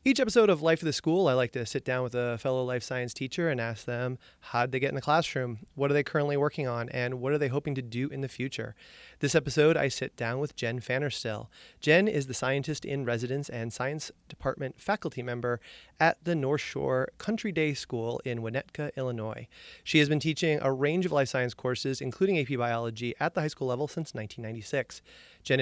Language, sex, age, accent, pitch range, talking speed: English, male, 30-49, American, 125-155 Hz, 220 wpm